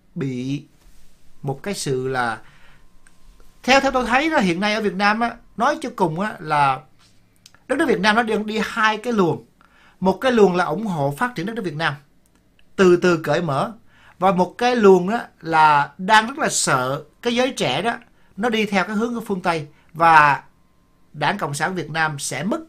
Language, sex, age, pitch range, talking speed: Vietnamese, male, 60-79, 145-215 Hz, 200 wpm